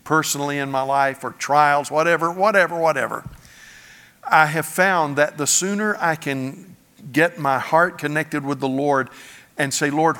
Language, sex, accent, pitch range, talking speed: English, male, American, 130-160 Hz, 160 wpm